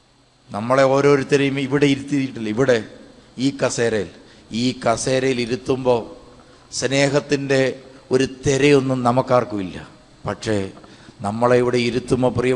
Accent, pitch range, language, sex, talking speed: Indian, 125-145 Hz, English, male, 155 wpm